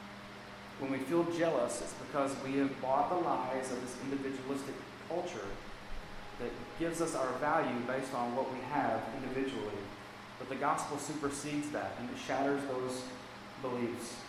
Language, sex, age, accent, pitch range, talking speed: English, male, 30-49, American, 105-150 Hz, 150 wpm